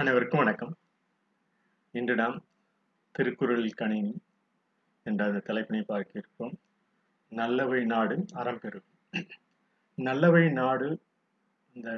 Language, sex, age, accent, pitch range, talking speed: Tamil, male, 30-49, native, 120-200 Hz, 80 wpm